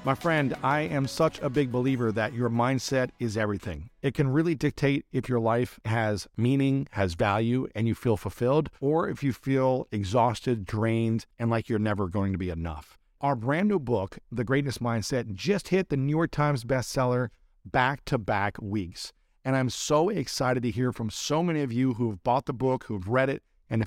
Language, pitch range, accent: English, 115-140 Hz, American